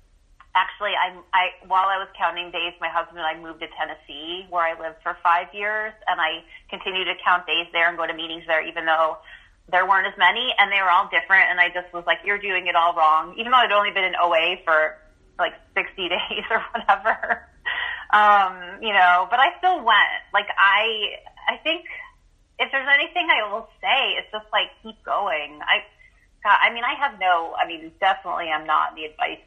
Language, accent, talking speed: English, American, 210 wpm